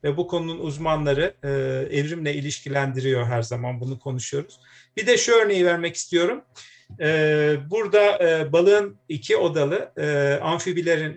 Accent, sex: native, male